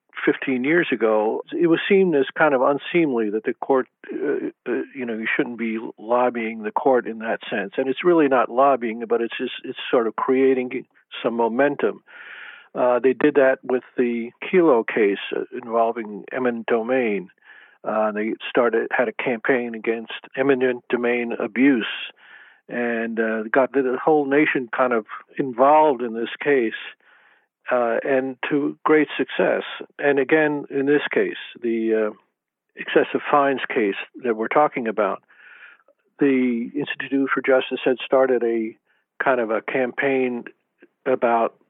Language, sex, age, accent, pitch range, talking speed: English, male, 50-69, American, 115-140 Hz, 150 wpm